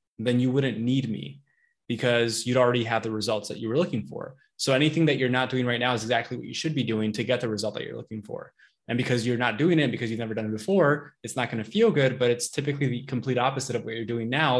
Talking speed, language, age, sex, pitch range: 280 wpm, English, 20-39, male, 115-145 Hz